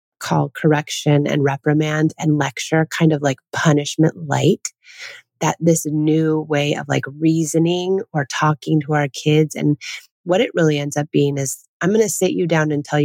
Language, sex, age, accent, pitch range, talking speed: English, female, 30-49, American, 145-175 Hz, 180 wpm